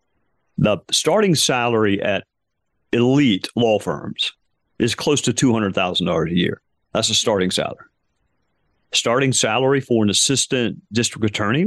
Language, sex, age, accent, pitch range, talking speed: English, male, 40-59, American, 100-130 Hz, 125 wpm